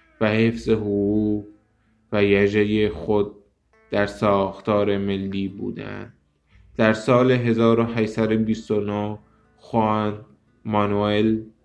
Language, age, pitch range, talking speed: Persian, 20-39, 100-110 Hz, 75 wpm